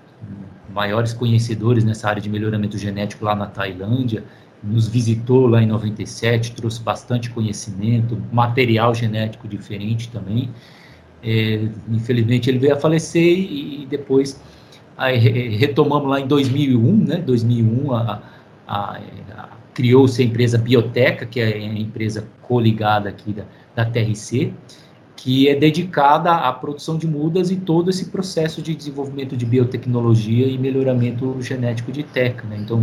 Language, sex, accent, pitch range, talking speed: Portuguese, male, Brazilian, 110-130 Hz, 140 wpm